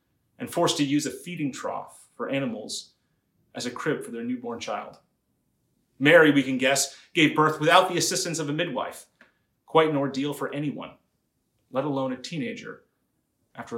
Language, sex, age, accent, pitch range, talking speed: English, male, 30-49, American, 135-175 Hz, 165 wpm